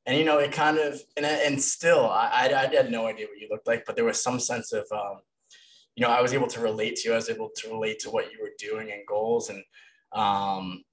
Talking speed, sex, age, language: 265 wpm, male, 20-39, English